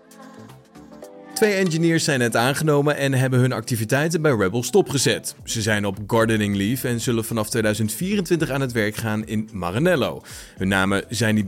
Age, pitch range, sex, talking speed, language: 30-49, 100-150 Hz, male, 160 wpm, Dutch